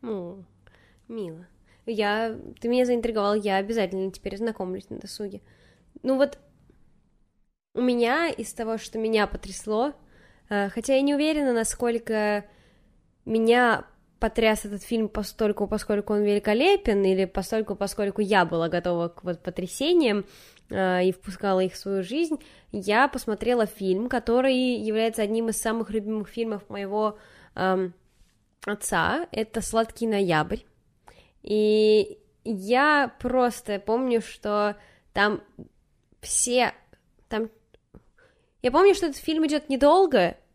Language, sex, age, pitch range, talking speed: Russian, female, 10-29, 200-245 Hz, 115 wpm